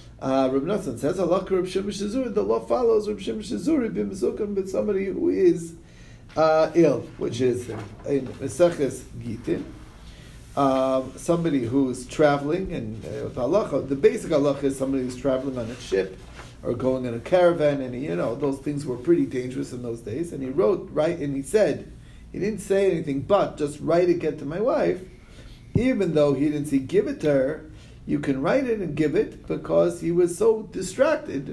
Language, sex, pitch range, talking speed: English, male, 135-205 Hz, 170 wpm